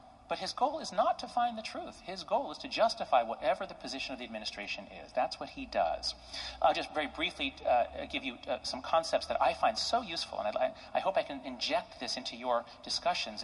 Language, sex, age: English, male, 40-59